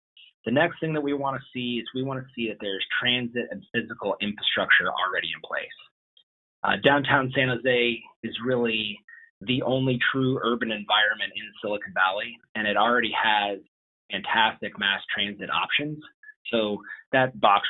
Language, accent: English, American